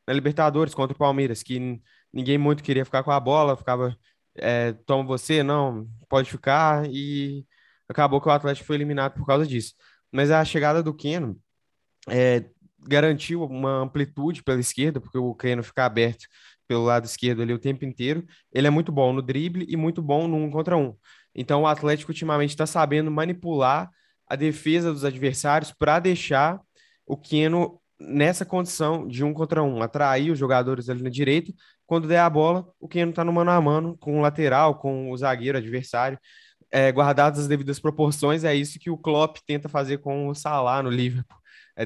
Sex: male